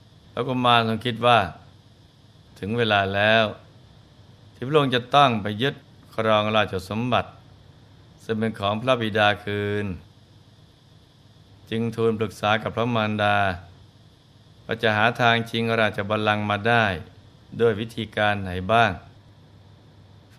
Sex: male